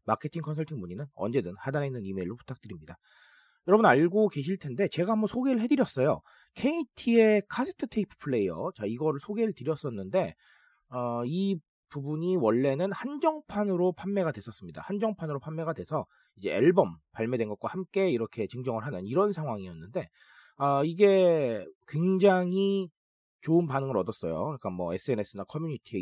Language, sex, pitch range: Korean, male, 130-205 Hz